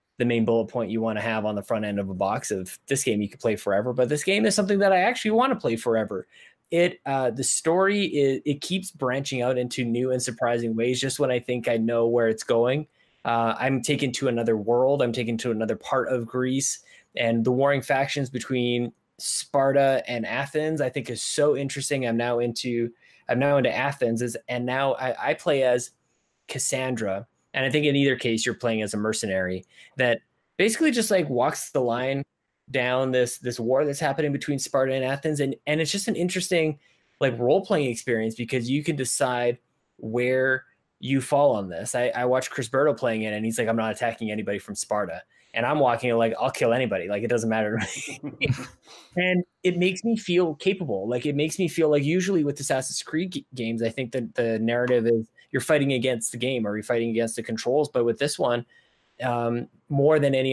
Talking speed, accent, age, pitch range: 210 wpm, American, 20-39, 115-145 Hz